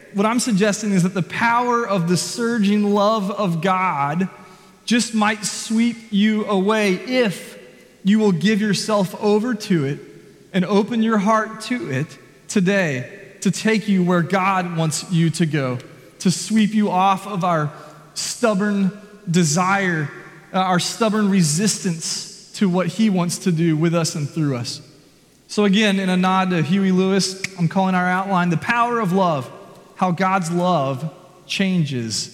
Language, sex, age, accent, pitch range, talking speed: English, male, 30-49, American, 175-215 Hz, 160 wpm